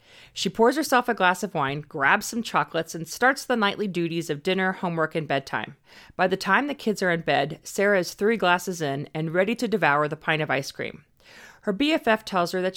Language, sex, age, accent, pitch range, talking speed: English, female, 40-59, American, 165-230 Hz, 220 wpm